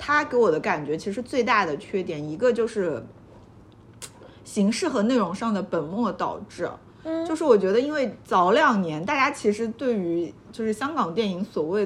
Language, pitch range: Chinese, 195-255 Hz